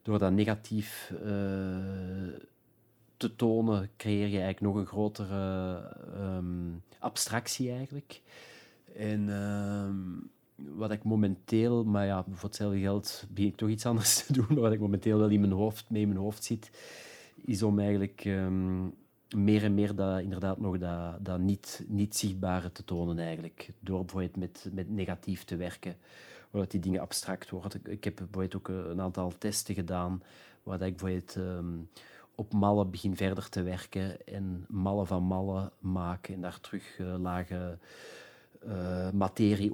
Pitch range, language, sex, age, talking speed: 95-105 Hz, Dutch, male, 30-49, 150 wpm